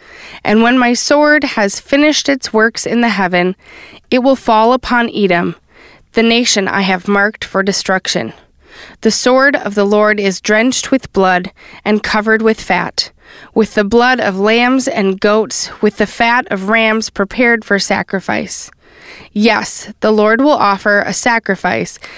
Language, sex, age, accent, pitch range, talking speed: English, female, 20-39, American, 195-245 Hz, 155 wpm